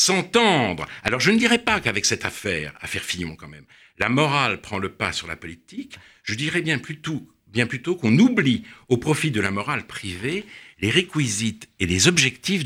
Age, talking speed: 60-79, 190 wpm